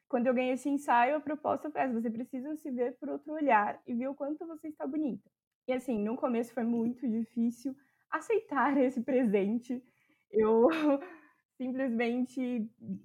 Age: 20-39